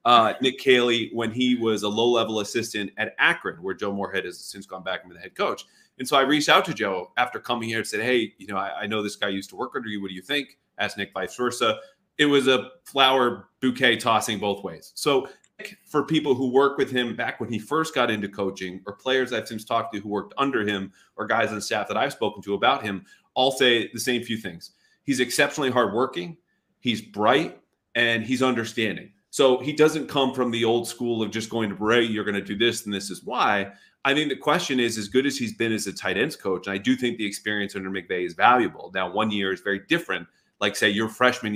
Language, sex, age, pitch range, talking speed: English, male, 30-49, 105-130 Hz, 245 wpm